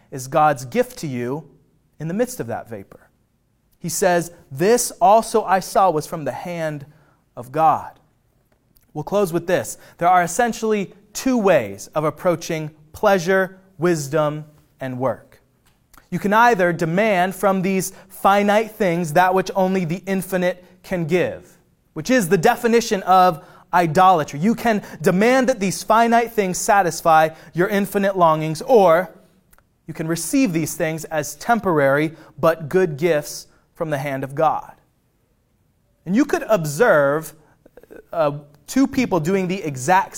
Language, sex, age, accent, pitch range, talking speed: English, male, 30-49, American, 155-200 Hz, 145 wpm